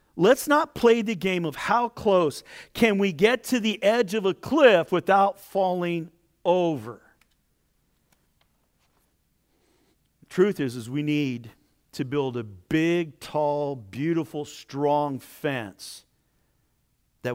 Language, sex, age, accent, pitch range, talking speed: English, male, 50-69, American, 120-165 Hz, 120 wpm